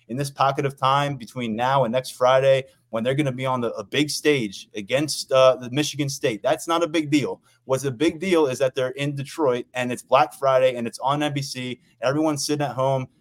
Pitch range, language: 125-155 Hz, English